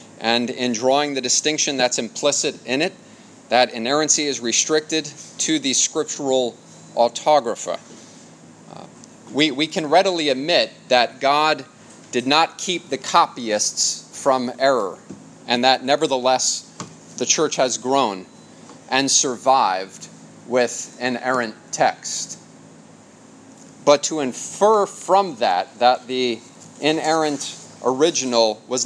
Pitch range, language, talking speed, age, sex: 120-150 Hz, English, 110 wpm, 30-49, male